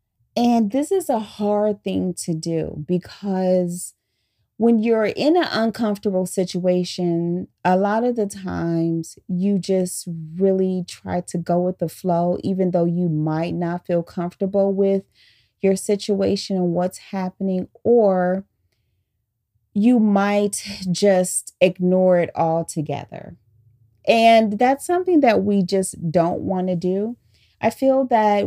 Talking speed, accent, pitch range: 130 wpm, American, 170-210 Hz